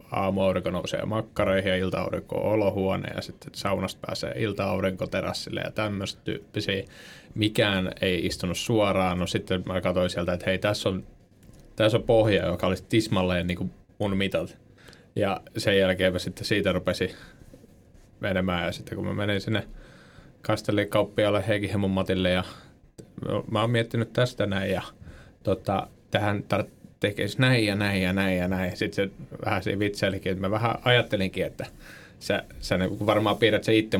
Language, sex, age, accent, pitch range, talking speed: Finnish, male, 20-39, native, 95-105 Hz, 155 wpm